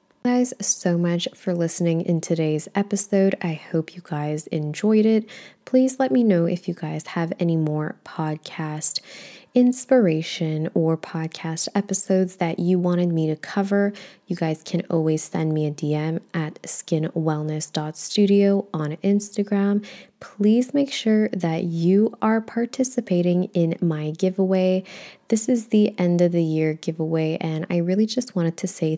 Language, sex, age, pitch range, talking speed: English, female, 20-39, 160-200 Hz, 150 wpm